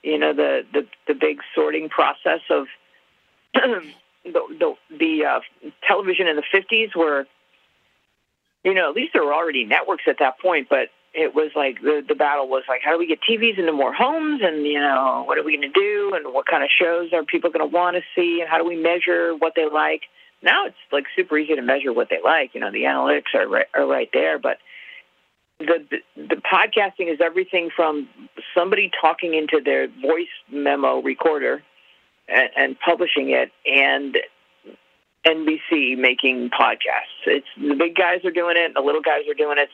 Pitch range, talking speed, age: 150-190 Hz, 195 wpm, 50-69